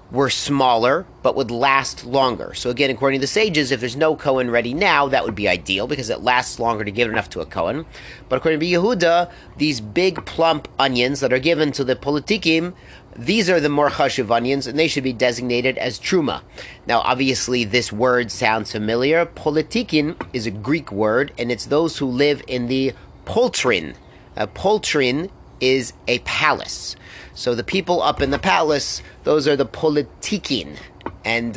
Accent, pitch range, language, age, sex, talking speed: American, 120-155 Hz, English, 30-49, male, 180 wpm